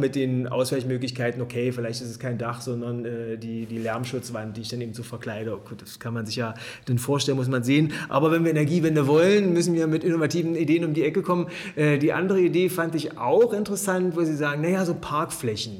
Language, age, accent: German, 30-49, German